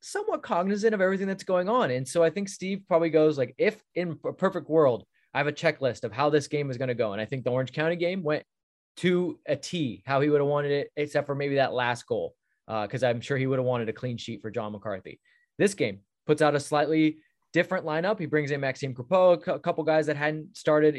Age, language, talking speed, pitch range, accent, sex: 20-39, English, 250 wpm, 130-170 Hz, American, male